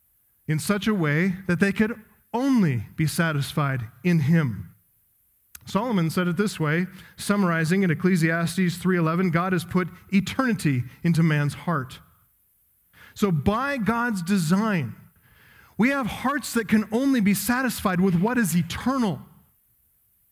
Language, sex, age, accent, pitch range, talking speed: English, male, 40-59, American, 150-205 Hz, 130 wpm